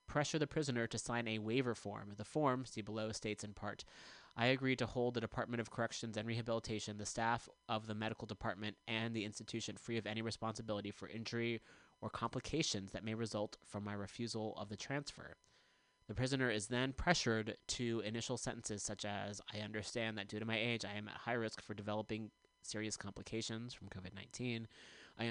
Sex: male